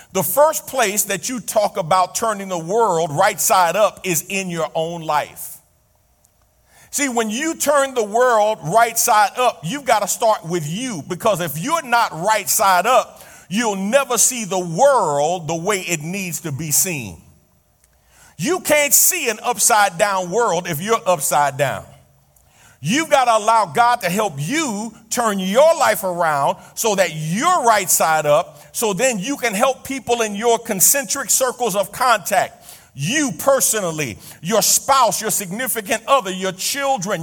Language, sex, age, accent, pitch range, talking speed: English, male, 50-69, American, 175-250 Hz, 165 wpm